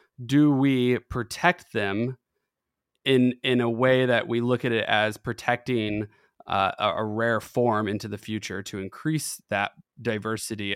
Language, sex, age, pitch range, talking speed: English, male, 20-39, 105-125 Hz, 145 wpm